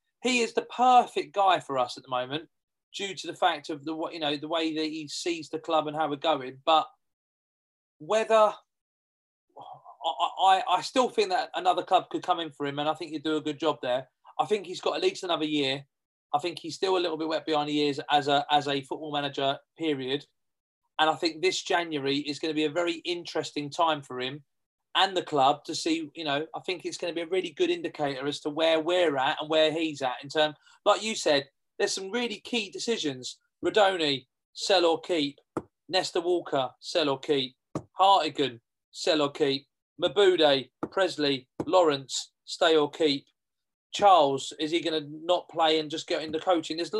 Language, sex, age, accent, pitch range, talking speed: English, male, 30-49, British, 145-185 Hz, 205 wpm